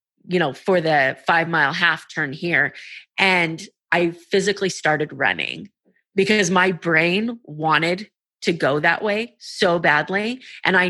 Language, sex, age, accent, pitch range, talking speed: English, female, 30-49, American, 155-185 Hz, 145 wpm